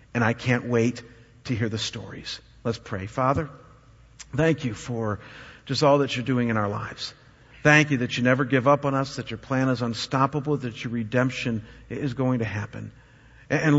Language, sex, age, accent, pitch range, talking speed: English, male, 50-69, American, 120-145 Hz, 190 wpm